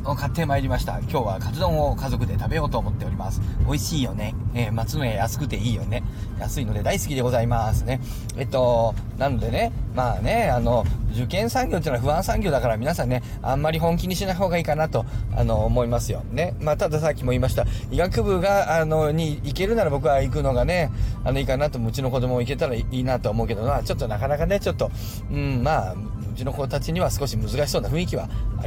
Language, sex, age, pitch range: Japanese, male, 40-59, 110-130 Hz